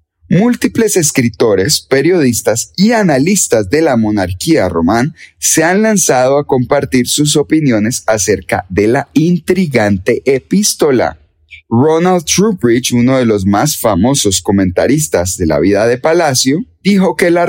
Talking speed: 125 wpm